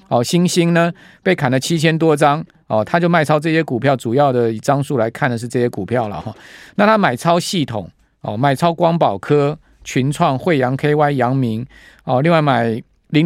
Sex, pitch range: male, 125-165 Hz